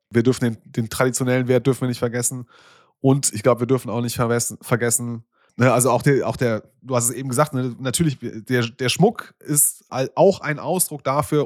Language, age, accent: German, 30-49, German